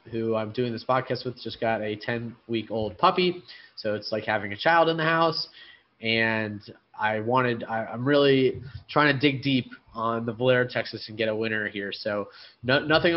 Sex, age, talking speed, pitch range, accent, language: male, 20-39, 190 wpm, 115-135 Hz, American, English